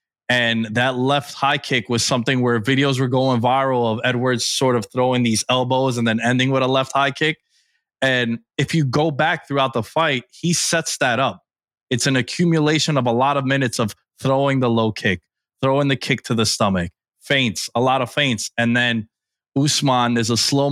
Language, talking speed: English, 200 wpm